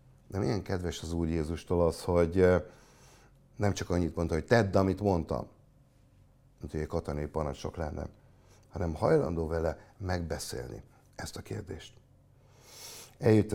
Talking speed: 130 wpm